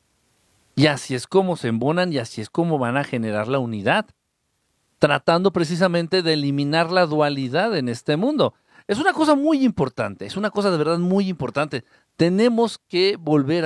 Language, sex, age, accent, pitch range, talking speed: Spanish, male, 50-69, Mexican, 130-180 Hz, 170 wpm